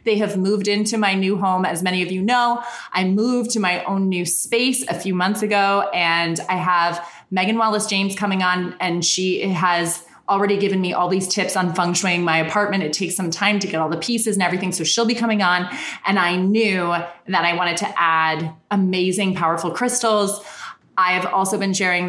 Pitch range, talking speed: 175-215 Hz, 210 wpm